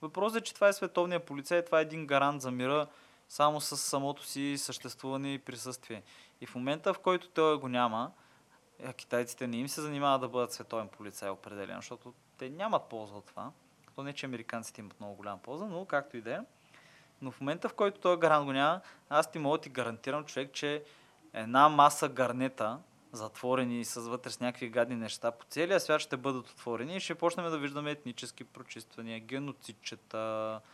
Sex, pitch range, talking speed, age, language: male, 130-175 Hz, 190 wpm, 20-39, Bulgarian